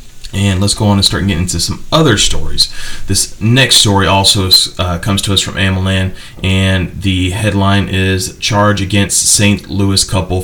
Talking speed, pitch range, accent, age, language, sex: 170 wpm, 95-100 Hz, American, 30-49, English, male